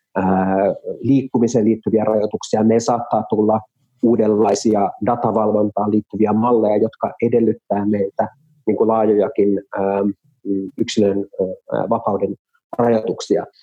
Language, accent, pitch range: Finnish, native, 105-130 Hz